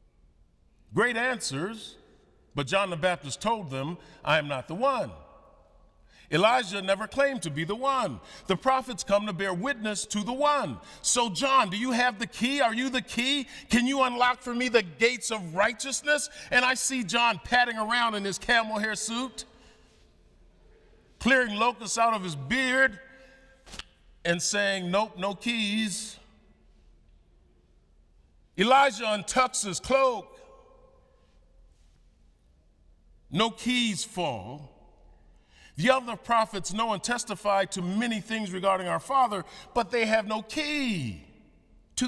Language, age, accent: English, 50-69, American